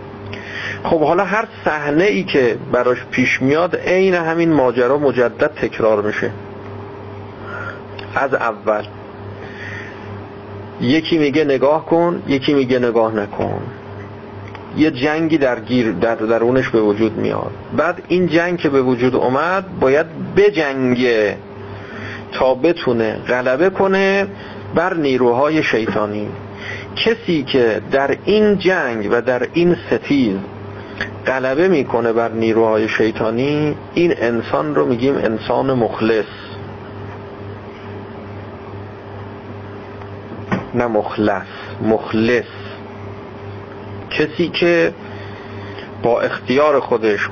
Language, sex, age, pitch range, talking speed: Persian, male, 40-59, 100-130 Hz, 100 wpm